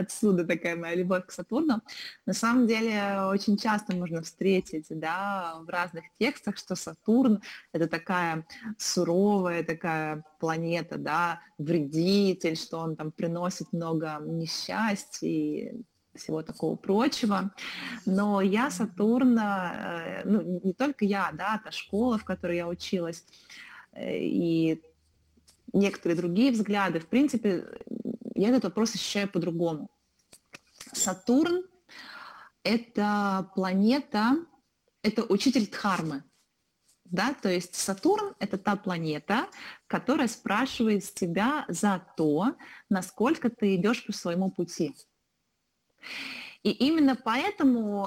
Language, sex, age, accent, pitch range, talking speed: Russian, female, 20-39, native, 170-220 Hz, 110 wpm